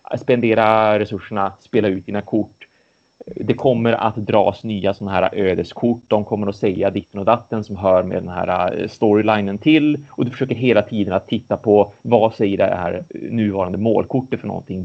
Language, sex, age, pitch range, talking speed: Swedish, male, 30-49, 100-120 Hz, 180 wpm